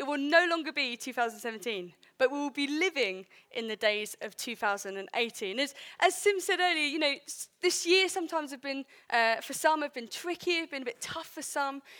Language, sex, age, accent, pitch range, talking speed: English, female, 20-39, British, 255-355 Hz, 200 wpm